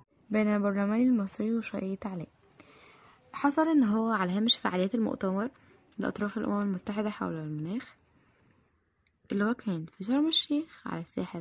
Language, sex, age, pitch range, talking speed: Arabic, female, 10-29, 190-240 Hz, 120 wpm